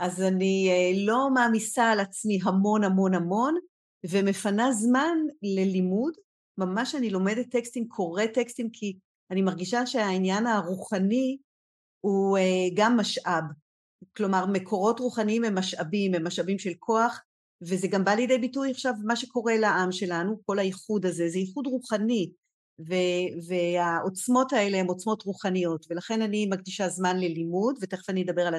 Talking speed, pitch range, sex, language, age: 135 wpm, 180-225 Hz, female, Hebrew, 40-59